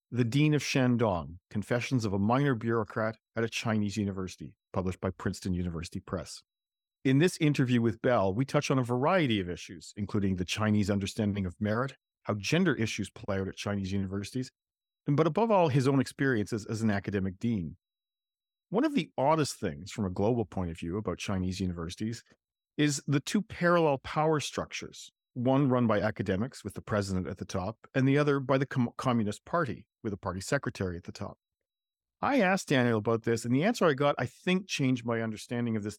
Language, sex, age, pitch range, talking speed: English, male, 40-59, 100-140 Hz, 195 wpm